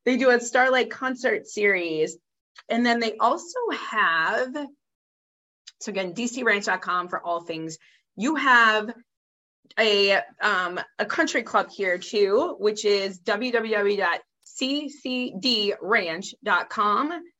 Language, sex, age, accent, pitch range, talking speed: English, female, 20-39, American, 185-240 Hz, 100 wpm